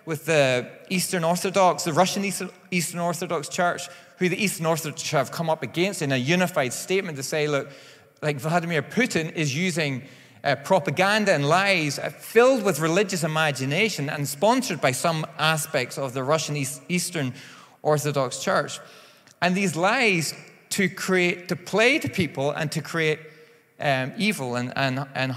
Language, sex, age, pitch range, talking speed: English, male, 30-49, 140-185 Hz, 160 wpm